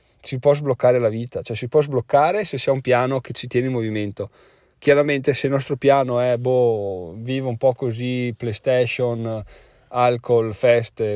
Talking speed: 170 wpm